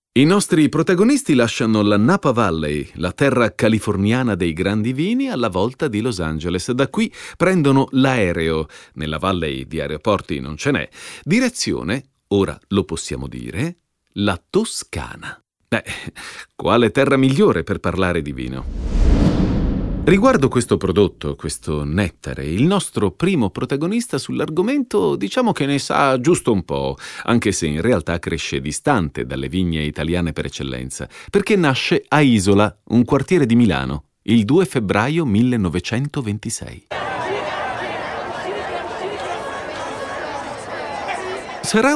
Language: Italian